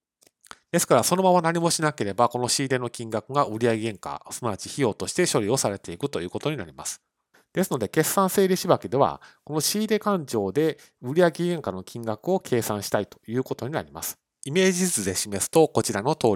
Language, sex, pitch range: Japanese, male, 110-160 Hz